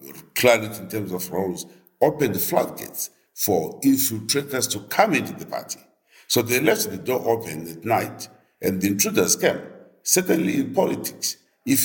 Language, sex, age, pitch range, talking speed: English, male, 50-69, 95-140 Hz, 155 wpm